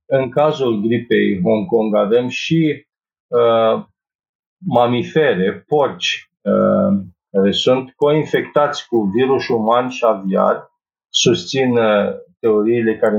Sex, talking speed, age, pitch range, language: male, 85 wpm, 50-69, 115-180 Hz, Romanian